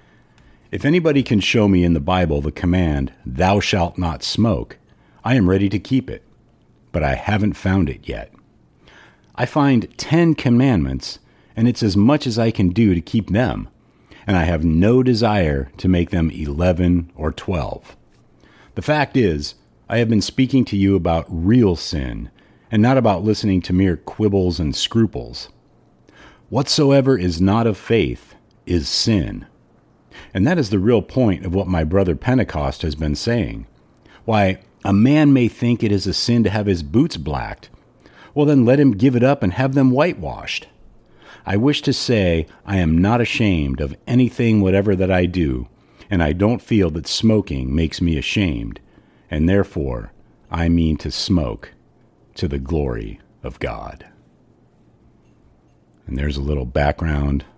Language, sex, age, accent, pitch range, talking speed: English, male, 50-69, American, 80-115 Hz, 165 wpm